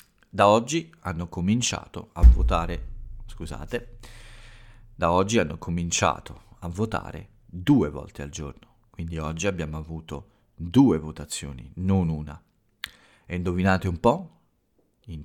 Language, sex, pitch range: Italian, male, 80-105 Hz